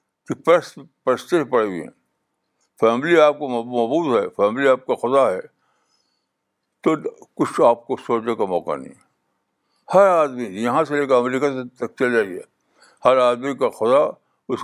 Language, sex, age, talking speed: Urdu, male, 60-79, 150 wpm